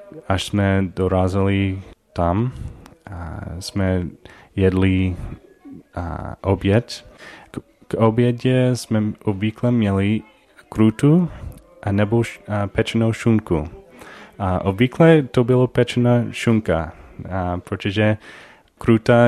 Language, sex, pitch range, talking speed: Czech, male, 95-115 Hz, 95 wpm